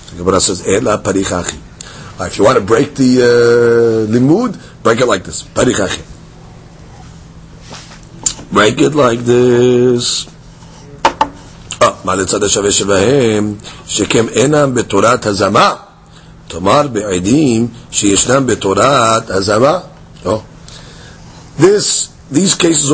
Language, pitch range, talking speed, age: English, 120-160 Hz, 100 wpm, 50-69